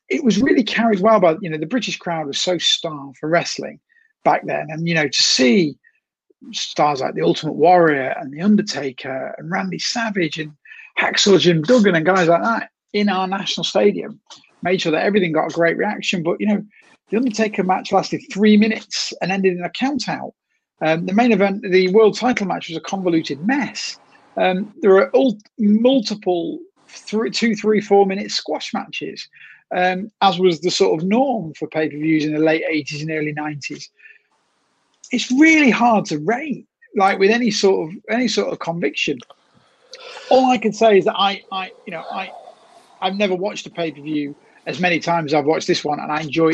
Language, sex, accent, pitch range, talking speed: English, male, British, 160-220 Hz, 200 wpm